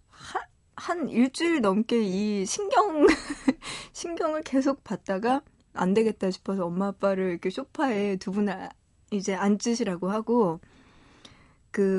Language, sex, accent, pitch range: Korean, female, native, 190-265 Hz